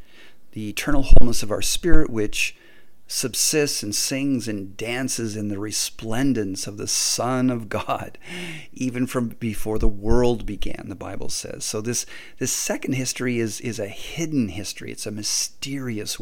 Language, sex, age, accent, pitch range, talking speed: English, male, 40-59, American, 105-130 Hz, 155 wpm